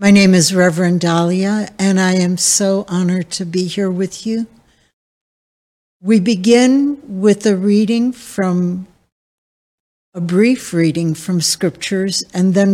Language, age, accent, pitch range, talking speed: English, 60-79, American, 175-210 Hz, 130 wpm